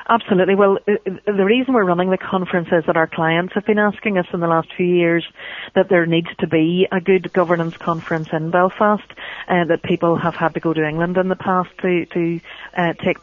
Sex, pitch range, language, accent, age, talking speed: female, 165-185 Hz, English, Irish, 40-59, 220 wpm